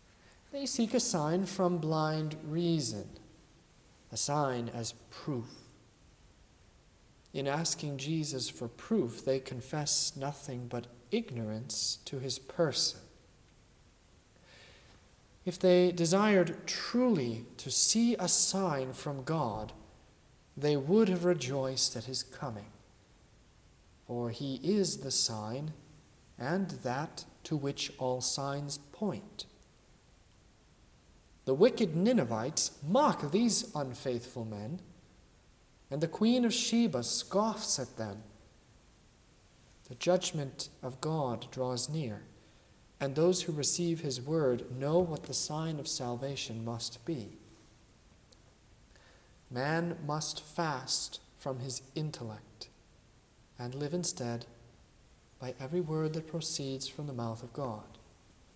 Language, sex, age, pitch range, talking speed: English, male, 40-59, 120-170 Hz, 110 wpm